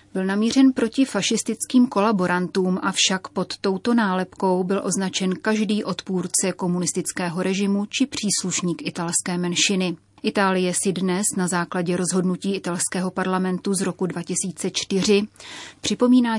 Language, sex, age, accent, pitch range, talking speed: Czech, female, 30-49, native, 180-205 Hz, 115 wpm